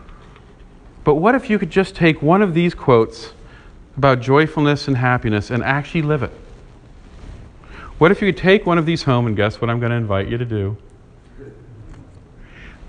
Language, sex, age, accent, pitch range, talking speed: English, male, 40-59, American, 105-170 Hz, 180 wpm